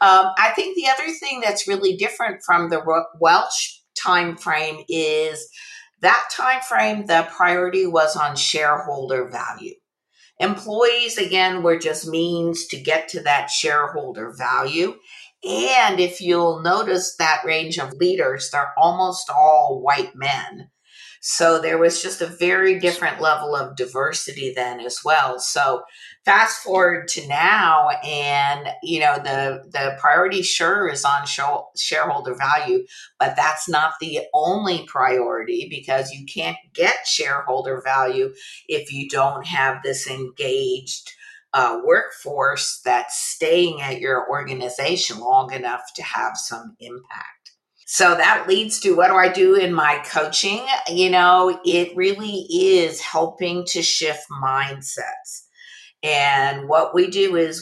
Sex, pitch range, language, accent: female, 150-195 Hz, English, American